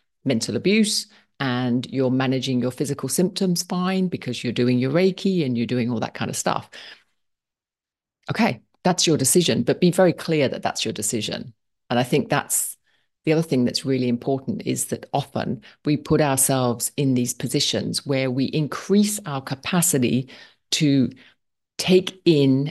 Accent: British